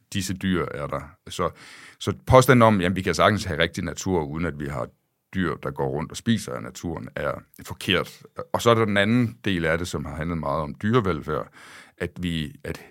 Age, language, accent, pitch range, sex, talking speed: 60-79, Danish, native, 85-105 Hz, male, 220 wpm